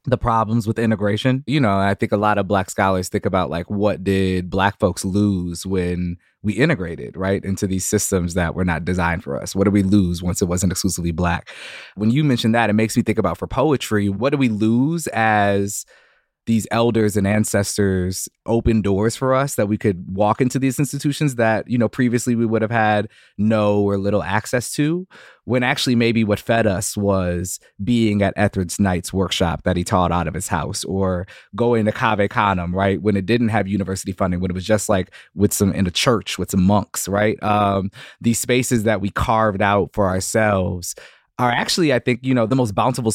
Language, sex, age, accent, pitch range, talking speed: English, male, 20-39, American, 95-115 Hz, 210 wpm